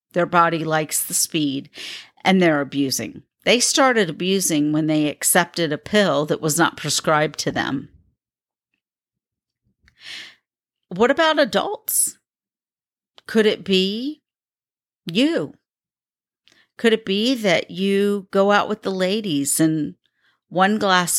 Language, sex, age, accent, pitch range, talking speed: English, female, 50-69, American, 160-185 Hz, 120 wpm